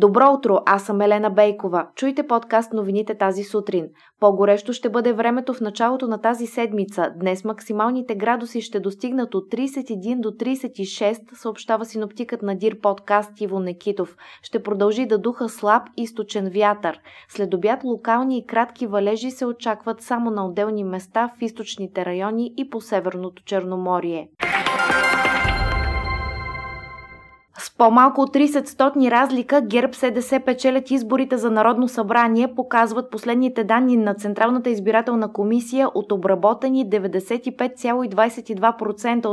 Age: 20-39